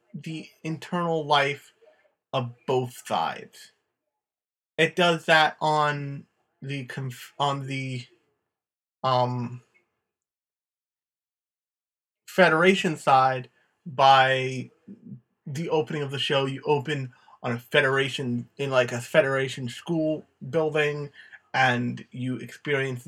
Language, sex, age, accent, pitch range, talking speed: English, male, 30-49, American, 130-165 Hz, 95 wpm